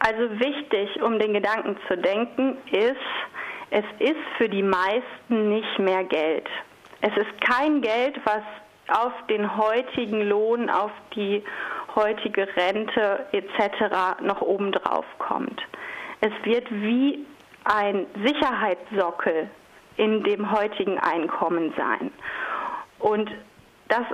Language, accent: German, German